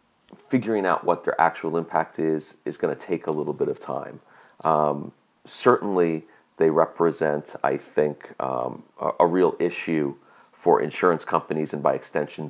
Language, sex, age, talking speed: English, male, 40-59, 160 wpm